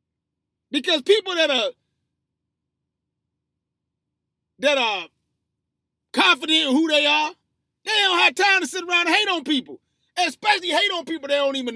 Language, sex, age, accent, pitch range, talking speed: English, male, 30-49, American, 260-380 Hz, 150 wpm